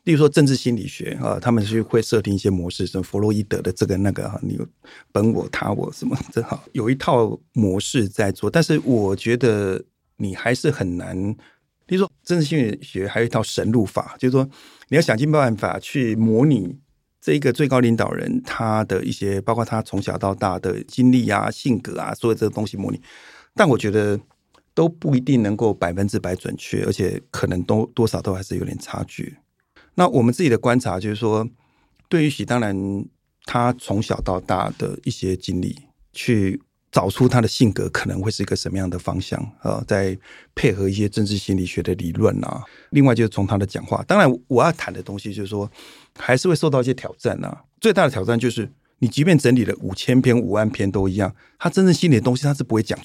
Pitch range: 100-135 Hz